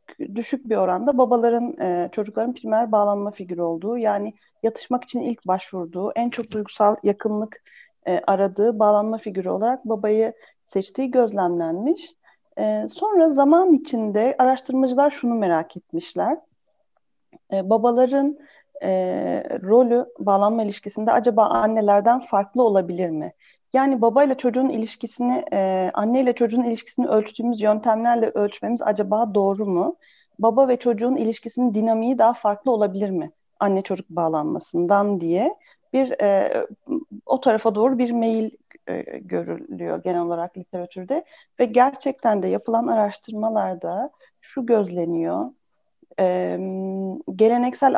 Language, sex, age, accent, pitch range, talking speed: Turkish, female, 40-59, native, 195-250 Hz, 110 wpm